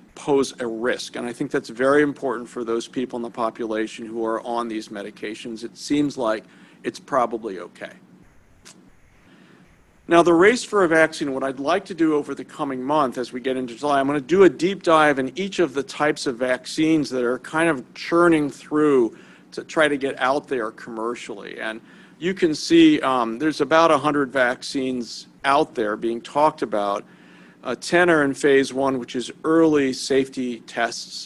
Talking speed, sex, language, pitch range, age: 190 wpm, male, English, 115-150 Hz, 50-69